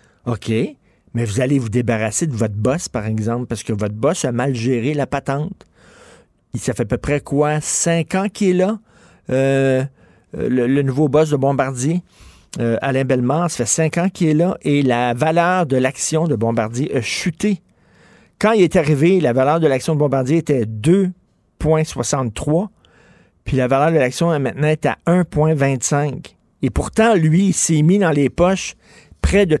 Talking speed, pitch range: 175 wpm, 125-170 Hz